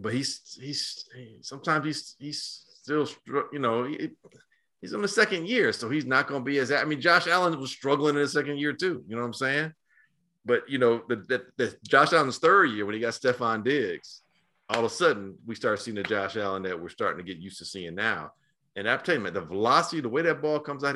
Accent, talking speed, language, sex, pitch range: American, 245 wpm, English, male, 110-150 Hz